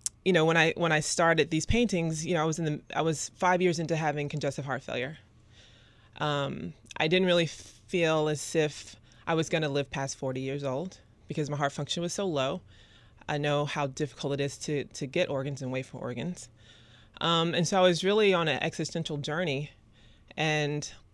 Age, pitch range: 30-49, 140-175 Hz